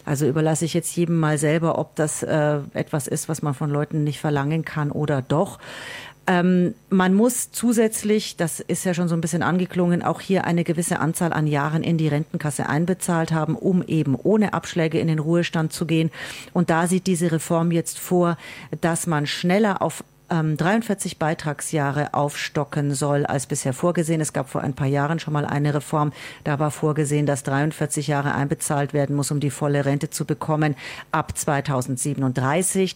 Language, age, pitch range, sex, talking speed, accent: German, 40-59, 145-175 Hz, female, 180 wpm, German